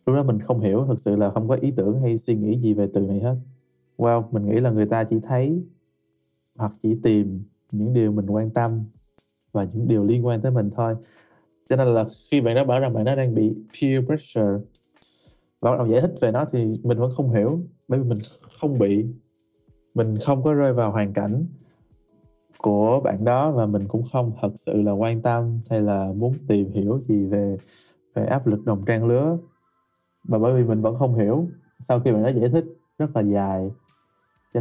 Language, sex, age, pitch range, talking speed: Vietnamese, male, 20-39, 105-130 Hz, 215 wpm